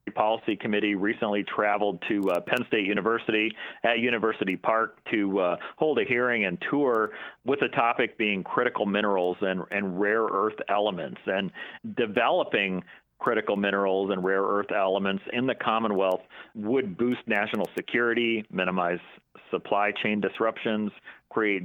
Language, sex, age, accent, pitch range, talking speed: English, male, 40-59, American, 100-115 Hz, 140 wpm